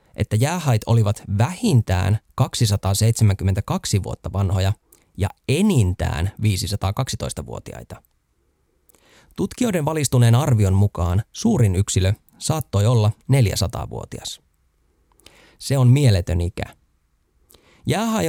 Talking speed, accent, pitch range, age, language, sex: 80 wpm, native, 100-125 Hz, 20-39, Finnish, male